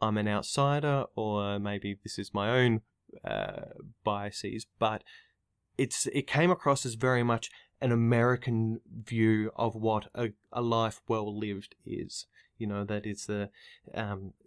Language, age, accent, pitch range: English, 20-39, Australian, 105-130 Hz